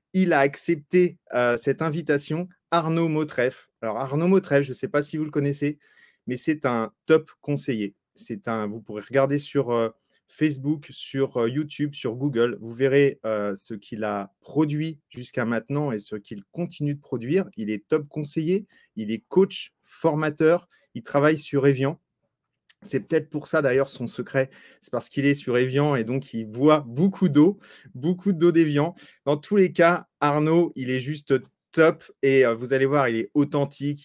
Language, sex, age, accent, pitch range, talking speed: French, male, 30-49, French, 130-160 Hz, 175 wpm